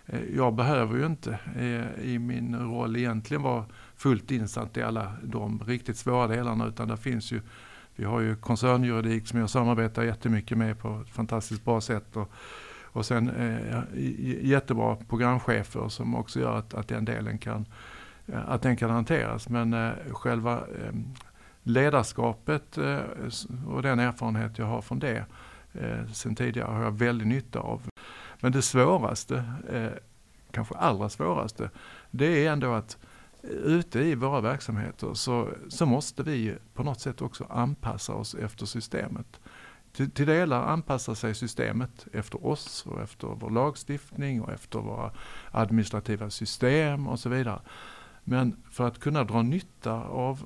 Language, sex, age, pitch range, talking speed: Swedish, male, 60-79, 110-125 Hz, 145 wpm